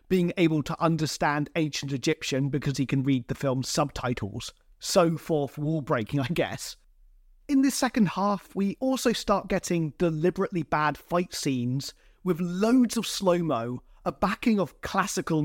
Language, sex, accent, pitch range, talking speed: English, male, British, 155-220 Hz, 145 wpm